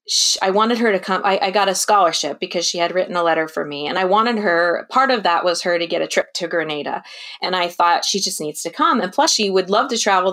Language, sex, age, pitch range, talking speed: English, female, 20-39, 180-240 Hz, 280 wpm